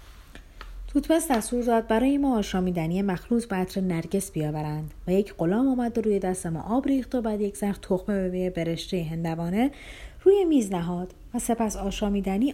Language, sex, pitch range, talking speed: Persian, female, 165-230 Hz, 160 wpm